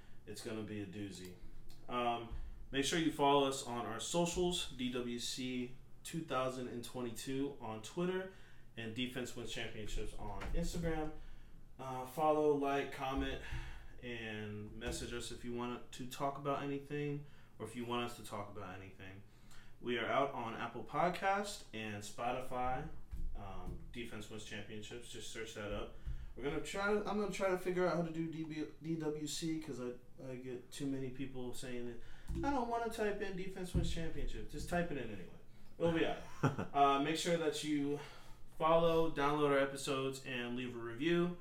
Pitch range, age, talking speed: 115-150 Hz, 20-39, 170 wpm